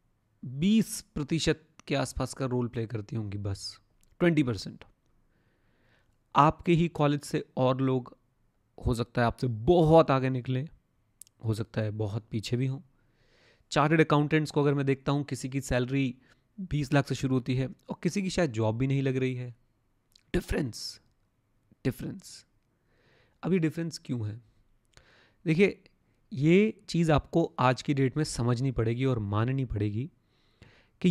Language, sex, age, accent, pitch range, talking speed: Hindi, male, 30-49, native, 120-155 Hz, 150 wpm